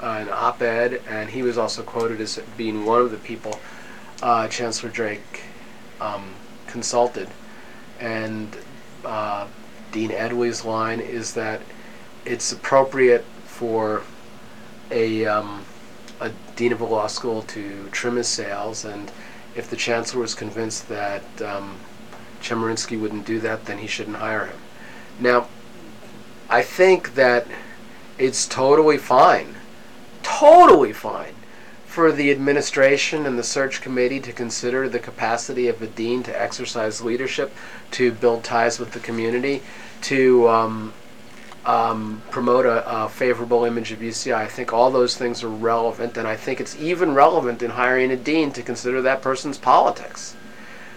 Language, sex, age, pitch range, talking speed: English, male, 40-59, 110-125 Hz, 140 wpm